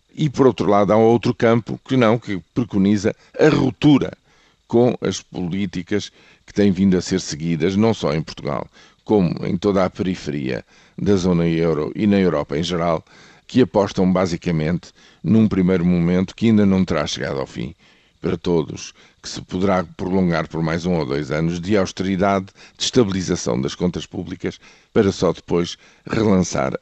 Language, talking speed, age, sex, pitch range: Portuguese, 170 wpm, 50-69, male, 90-105 Hz